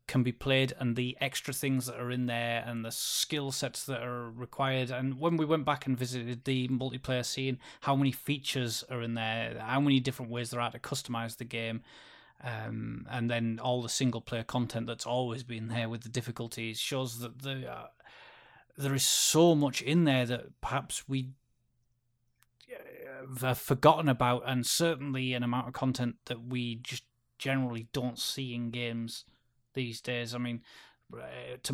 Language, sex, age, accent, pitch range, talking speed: English, male, 20-39, British, 120-130 Hz, 170 wpm